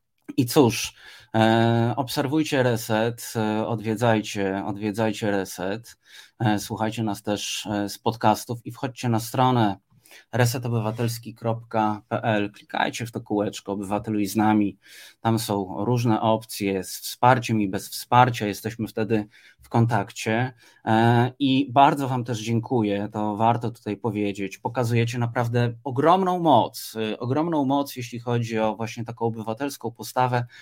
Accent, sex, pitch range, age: native, male, 110-125 Hz, 20-39